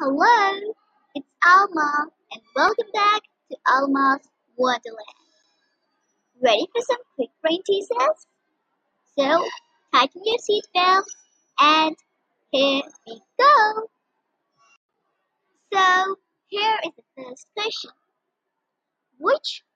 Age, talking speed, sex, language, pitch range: 10-29, 90 wpm, male, English, 275-385 Hz